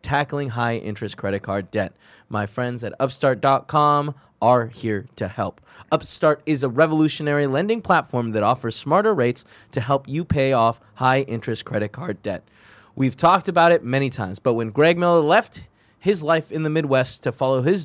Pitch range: 120-155 Hz